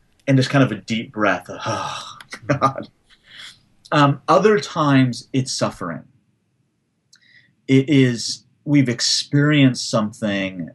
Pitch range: 120-155 Hz